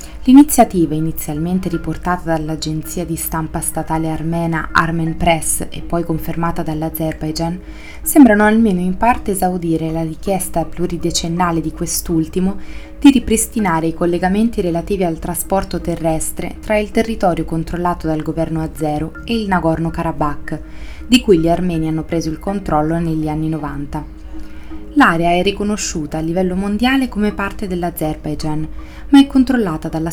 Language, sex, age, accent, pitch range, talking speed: Italian, female, 20-39, native, 160-195 Hz, 130 wpm